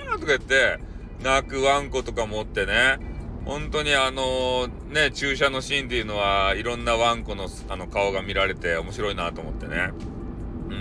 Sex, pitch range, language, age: male, 100-135 Hz, Japanese, 30-49